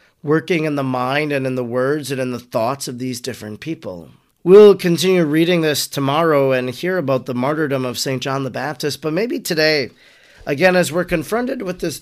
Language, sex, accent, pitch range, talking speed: English, male, American, 135-175 Hz, 200 wpm